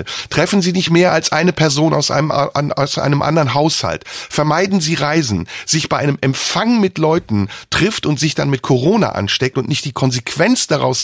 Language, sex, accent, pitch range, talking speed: German, male, German, 125-170 Hz, 180 wpm